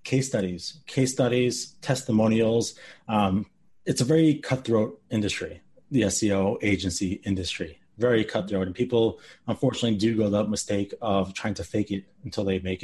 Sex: male